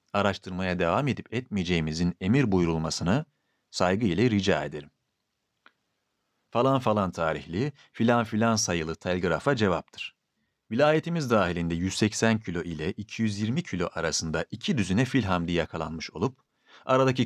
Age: 40-59